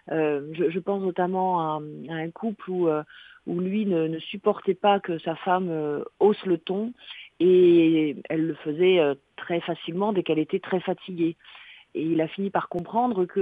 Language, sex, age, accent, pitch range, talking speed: French, female, 40-59, French, 170-210 Hz, 190 wpm